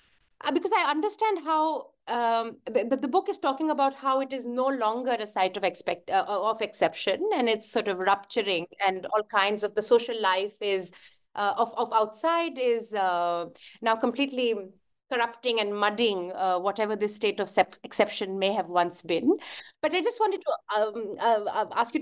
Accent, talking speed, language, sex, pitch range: Indian, 185 wpm, English, female, 190-255 Hz